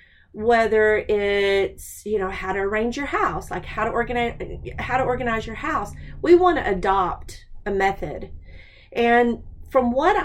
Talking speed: 160 wpm